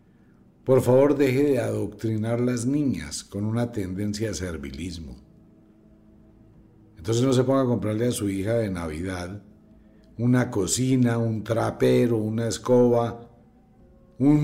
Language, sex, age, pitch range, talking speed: English, male, 60-79, 100-135 Hz, 125 wpm